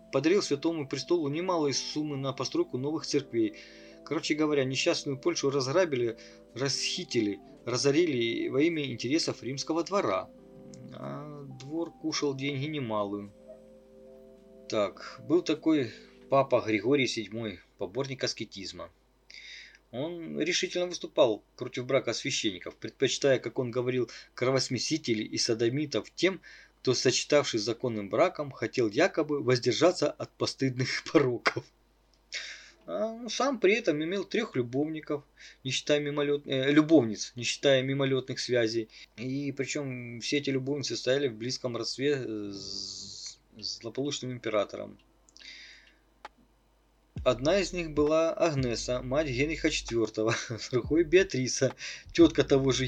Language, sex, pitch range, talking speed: Russian, male, 120-155 Hz, 115 wpm